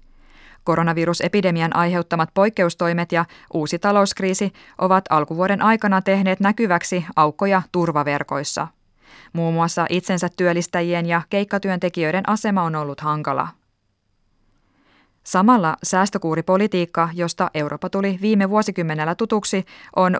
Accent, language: native, Finnish